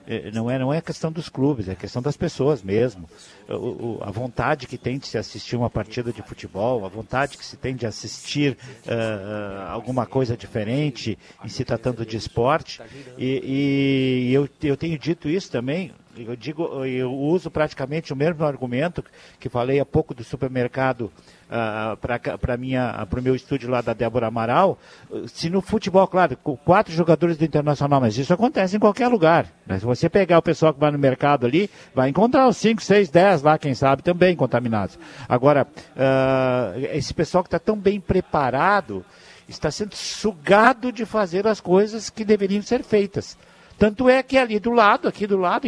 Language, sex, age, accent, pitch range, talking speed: Portuguese, male, 50-69, Brazilian, 125-175 Hz, 185 wpm